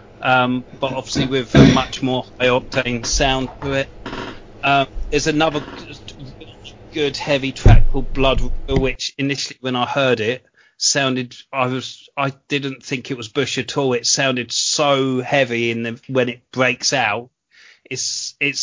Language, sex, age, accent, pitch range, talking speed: English, male, 30-49, British, 125-145 Hz, 160 wpm